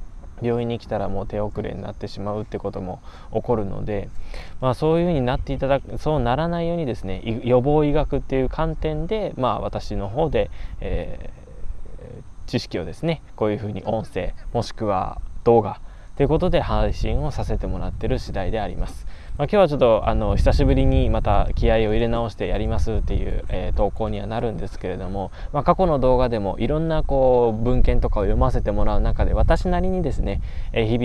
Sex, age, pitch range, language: male, 20-39, 100-120 Hz, Japanese